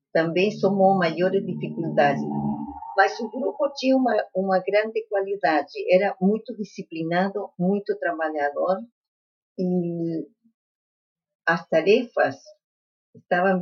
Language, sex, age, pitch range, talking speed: Portuguese, female, 50-69, 165-205 Hz, 95 wpm